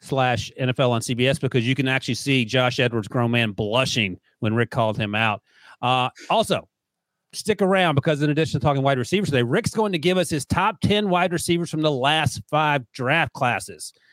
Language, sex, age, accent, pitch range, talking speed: English, male, 40-59, American, 130-180 Hz, 200 wpm